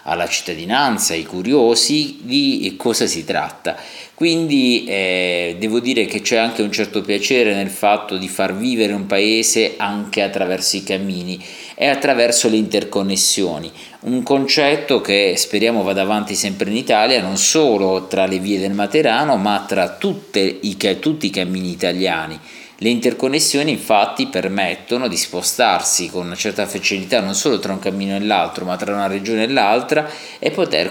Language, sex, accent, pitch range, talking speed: Italian, male, native, 95-115 Hz, 160 wpm